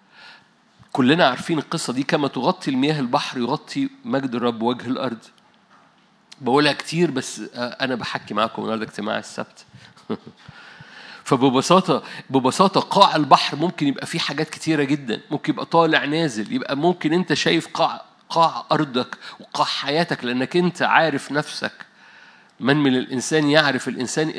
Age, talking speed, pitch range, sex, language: 50-69, 135 wpm, 135-180 Hz, male, Arabic